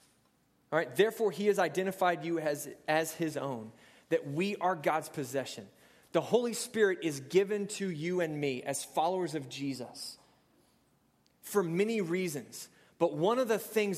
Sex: male